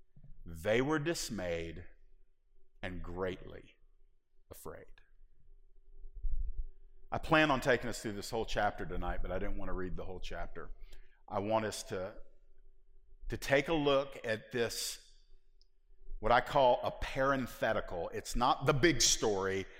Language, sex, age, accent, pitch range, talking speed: English, male, 50-69, American, 110-150 Hz, 135 wpm